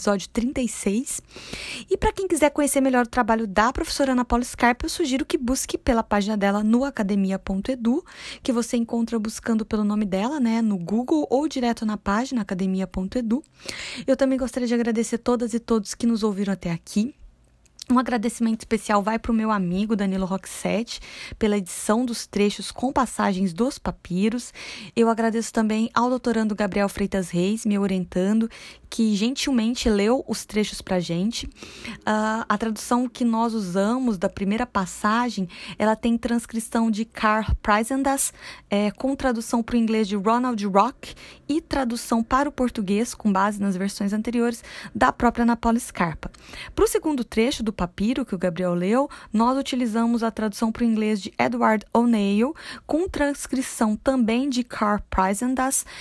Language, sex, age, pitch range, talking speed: Portuguese, female, 20-39, 210-250 Hz, 160 wpm